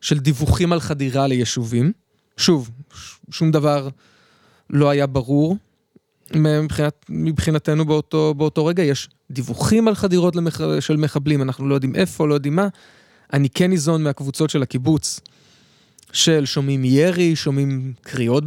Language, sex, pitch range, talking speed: Hebrew, male, 130-155 Hz, 135 wpm